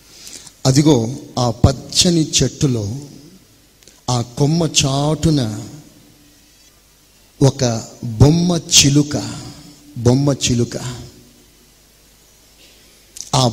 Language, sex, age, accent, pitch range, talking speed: Telugu, male, 50-69, native, 115-145 Hz, 60 wpm